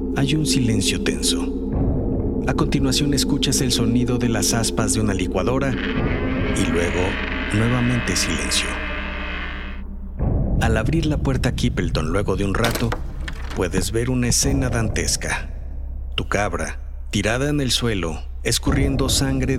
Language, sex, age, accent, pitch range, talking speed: Spanish, male, 50-69, Mexican, 75-125 Hz, 125 wpm